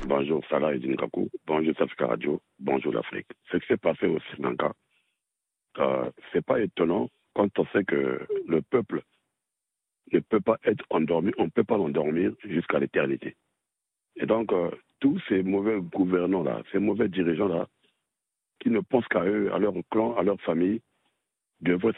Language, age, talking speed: French, 60-79, 160 wpm